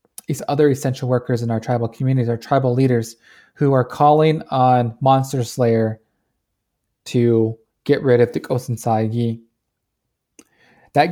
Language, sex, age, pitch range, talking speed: English, male, 20-39, 120-135 Hz, 135 wpm